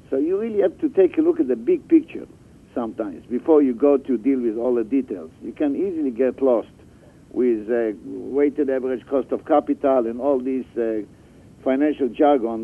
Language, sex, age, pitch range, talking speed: English, male, 60-79, 120-150 Hz, 190 wpm